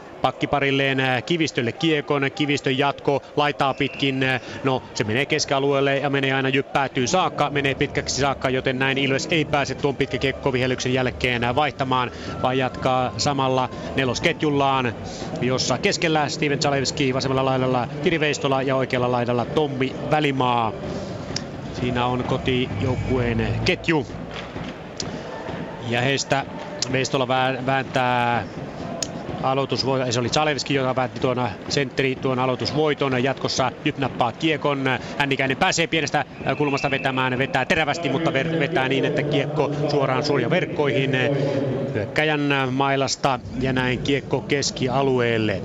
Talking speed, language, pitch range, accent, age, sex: 115 wpm, Finnish, 130-145 Hz, native, 30-49, male